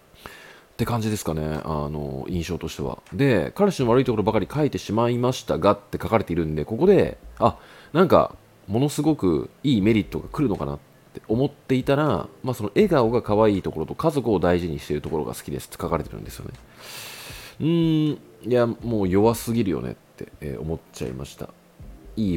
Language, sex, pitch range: Japanese, male, 75-115 Hz